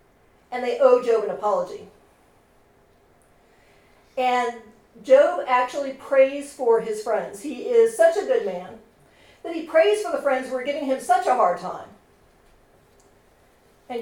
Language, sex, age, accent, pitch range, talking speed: English, female, 50-69, American, 230-325 Hz, 145 wpm